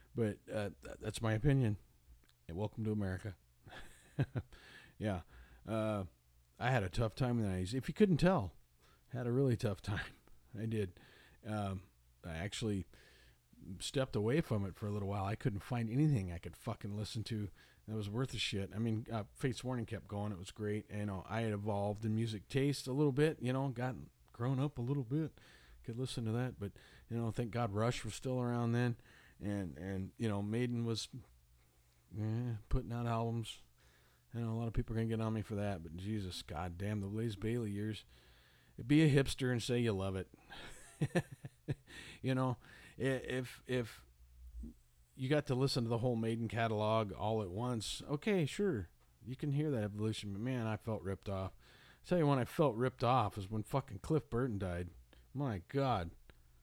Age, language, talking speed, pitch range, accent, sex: 40-59, English, 195 wpm, 95-125 Hz, American, male